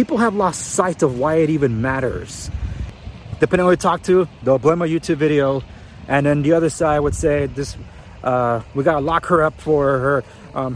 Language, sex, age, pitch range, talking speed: English, male, 30-49, 130-170 Hz, 205 wpm